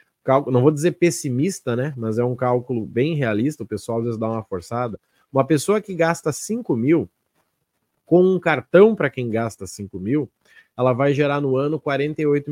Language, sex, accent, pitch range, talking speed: Portuguese, male, Brazilian, 115-155 Hz, 180 wpm